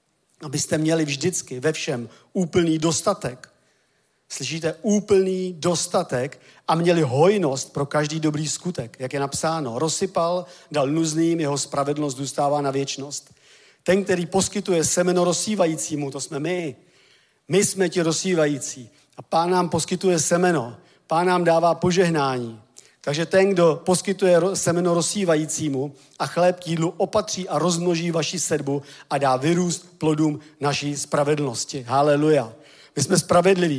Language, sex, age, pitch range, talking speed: Czech, male, 40-59, 145-180 Hz, 130 wpm